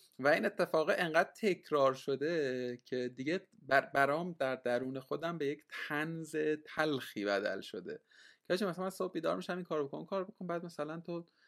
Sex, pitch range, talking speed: male, 125-170 Hz, 165 wpm